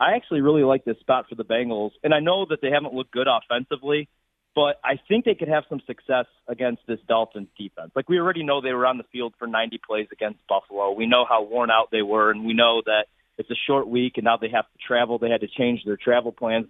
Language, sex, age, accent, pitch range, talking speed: English, male, 40-59, American, 115-145 Hz, 260 wpm